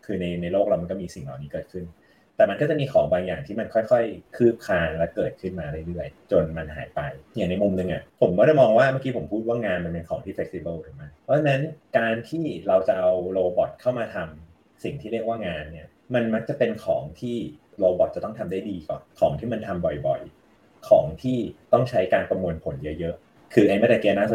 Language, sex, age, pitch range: Thai, male, 30-49, 85-125 Hz